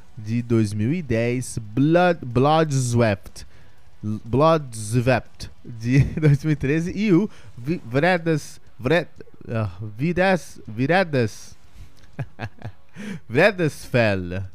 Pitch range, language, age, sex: 100-135 Hz, Portuguese, 20-39, male